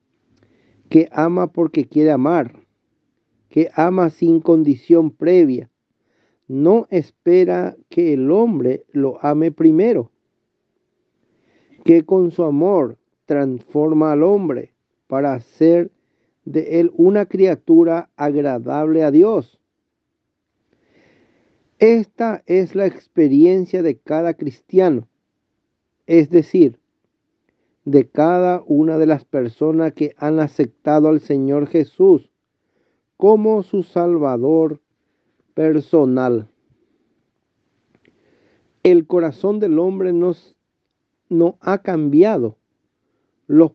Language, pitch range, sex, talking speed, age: Spanish, 150-180 Hz, male, 90 wpm, 50-69